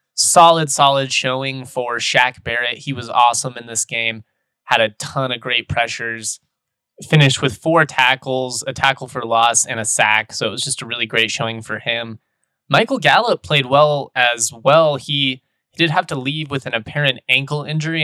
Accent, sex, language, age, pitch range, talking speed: American, male, English, 20-39, 115-140 Hz, 185 wpm